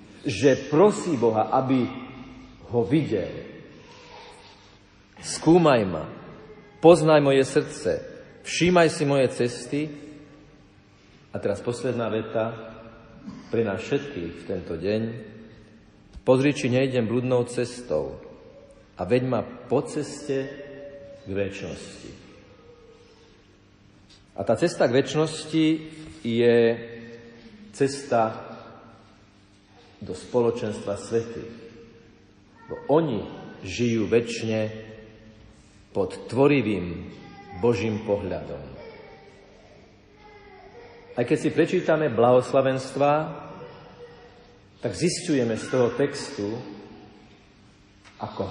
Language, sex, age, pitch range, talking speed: Slovak, male, 50-69, 105-140 Hz, 80 wpm